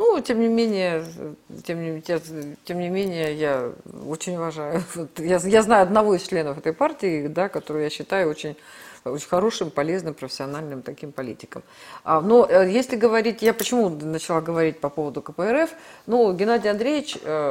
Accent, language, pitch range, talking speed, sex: native, Russian, 155-205 Hz, 155 wpm, female